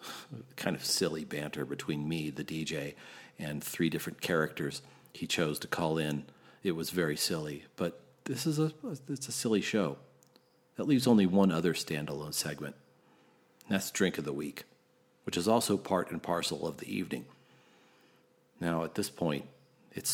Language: English